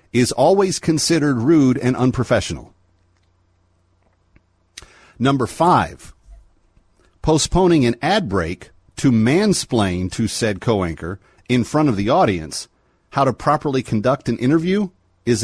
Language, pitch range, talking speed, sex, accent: English, 90-130 Hz, 115 wpm, male, American